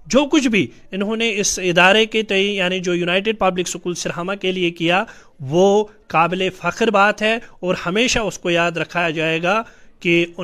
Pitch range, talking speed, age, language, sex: 170-215 Hz, 185 wpm, 30-49, Urdu, male